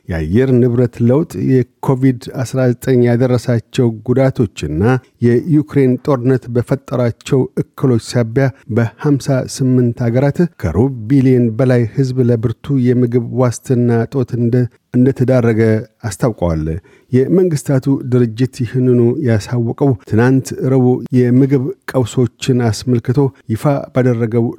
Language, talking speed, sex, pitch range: Amharic, 85 wpm, male, 115-135 Hz